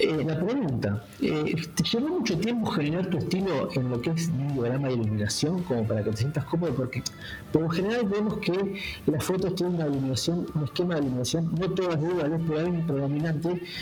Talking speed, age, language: 190 wpm, 50-69, Spanish